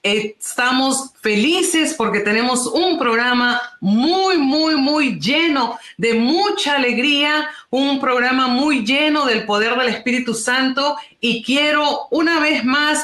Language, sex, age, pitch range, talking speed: Spanish, female, 40-59, 210-275 Hz, 125 wpm